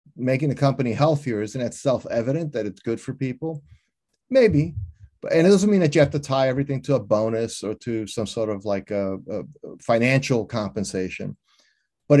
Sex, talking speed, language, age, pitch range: male, 185 wpm, English, 30-49, 110-140 Hz